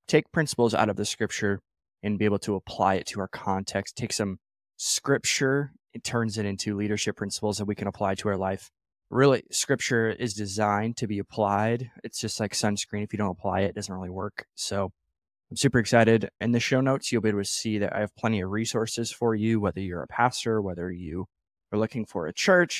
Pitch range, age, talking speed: 100-115 Hz, 20-39, 220 wpm